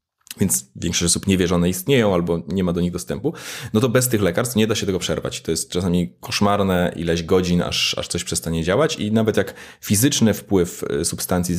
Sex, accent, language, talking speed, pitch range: male, native, Polish, 200 wpm, 90-115 Hz